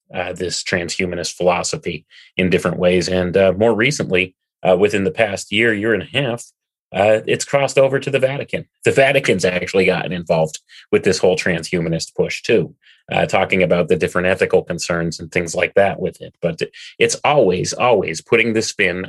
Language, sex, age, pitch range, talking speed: English, male, 30-49, 90-140 Hz, 180 wpm